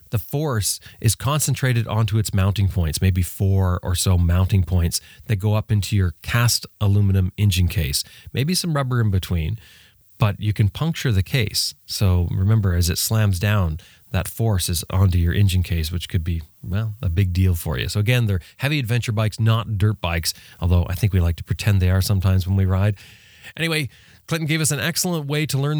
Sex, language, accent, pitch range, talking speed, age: male, English, American, 95-120 Hz, 200 wpm, 30-49